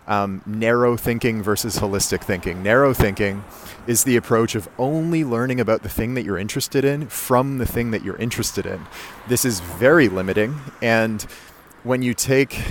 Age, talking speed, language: 30-49, 170 wpm, English